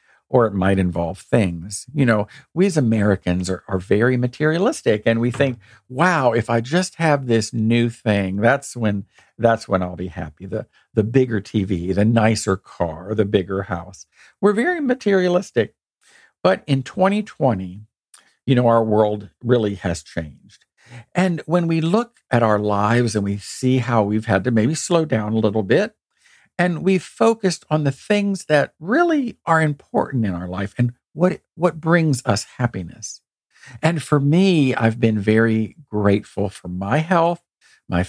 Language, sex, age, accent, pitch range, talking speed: English, male, 50-69, American, 105-160 Hz, 165 wpm